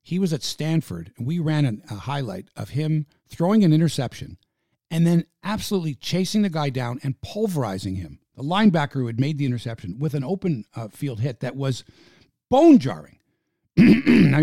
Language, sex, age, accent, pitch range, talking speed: English, male, 50-69, American, 115-165 Hz, 175 wpm